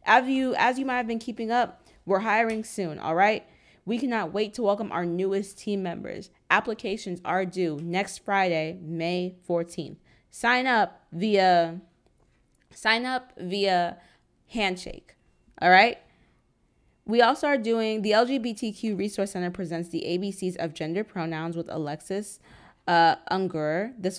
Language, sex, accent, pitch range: English, female, American, 165-210 Hz